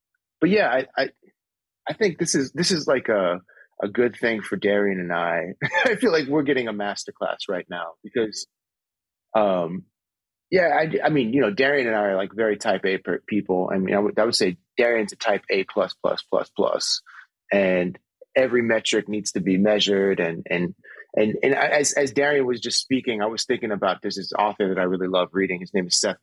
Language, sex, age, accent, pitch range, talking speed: English, male, 30-49, American, 95-120 Hz, 210 wpm